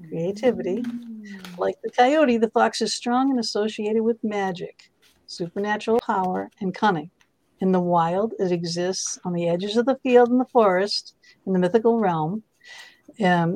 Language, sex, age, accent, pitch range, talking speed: English, female, 60-79, American, 175-225 Hz, 155 wpm